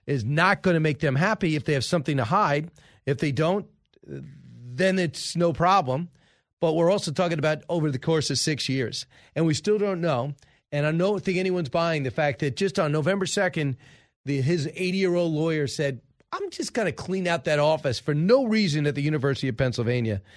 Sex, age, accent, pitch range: male, 40-59, American, 135-170 Hz